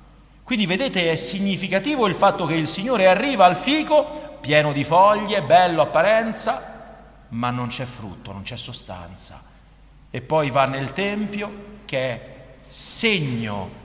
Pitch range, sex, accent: 125-205 Hz, male, native